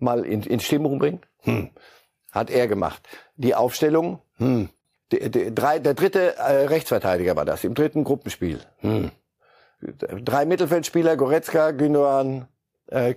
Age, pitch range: 50-69, 125-160 Hz